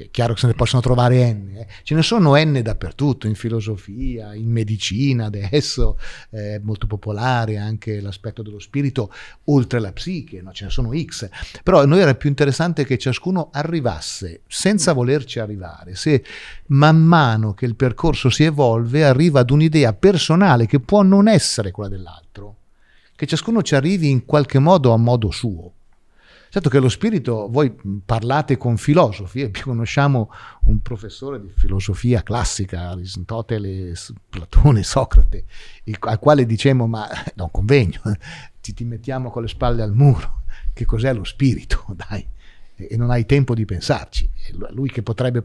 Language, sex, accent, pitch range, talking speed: Italian, male, native, 105-140 Hz, 160 wpm